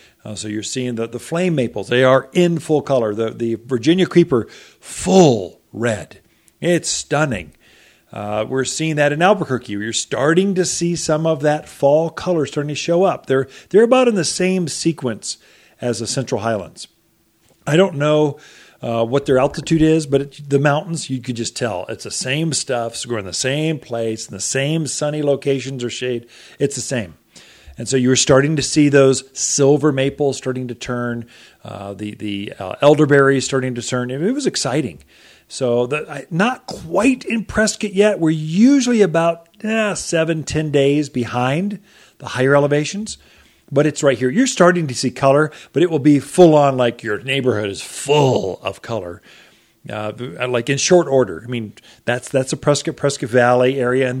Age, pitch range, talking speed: 40-59, 125-160 Hz, 185 wpm